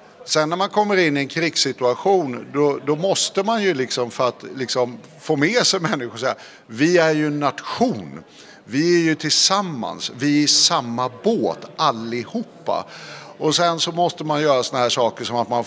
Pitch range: 125-160 Hz